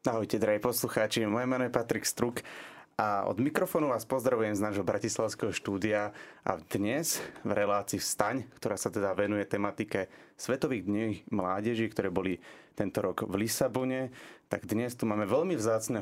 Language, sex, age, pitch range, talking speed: Slovak, male, 30-49, 100-120 Hz, 155 wpm